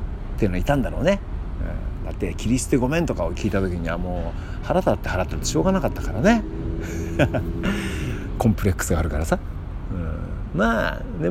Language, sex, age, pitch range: Japanese, male, 50-69, 85-105 Hz